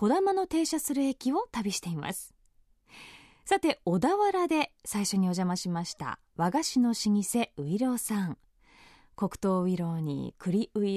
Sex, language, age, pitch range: female, Japanese, 20-39, 180-265 Hz